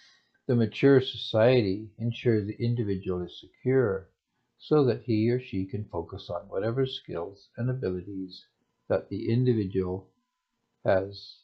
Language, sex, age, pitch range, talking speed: English, male, 60-79, 100-130 Hz, 125 wpm